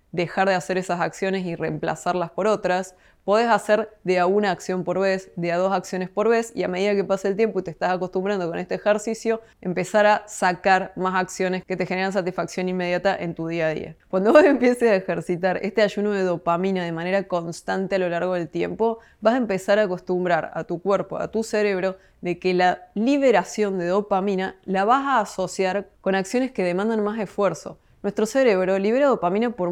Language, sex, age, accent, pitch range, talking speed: Spanish, female, 20-39, Argentinian, 180-210 Hz, 205 wpm